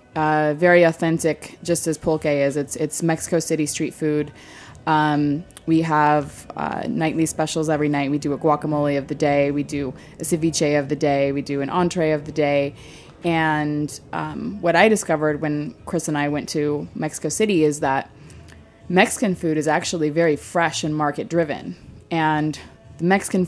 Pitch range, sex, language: 150-170 Hz, female, English